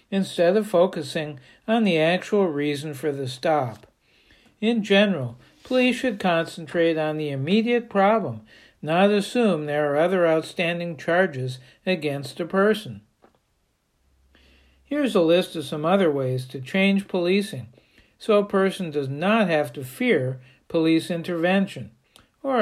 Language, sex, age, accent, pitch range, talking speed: English, male, 60-79, American, 150-195 Hz, 135 wpm